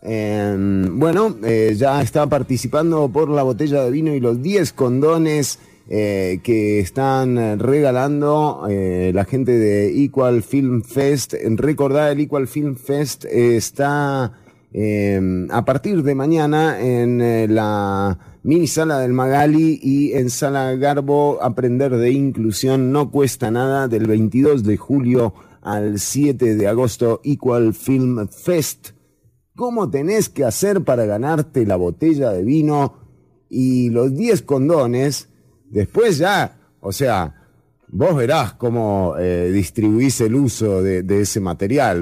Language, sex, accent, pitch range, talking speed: English, male, Argentinian, 105-145 Hz, 125 wpm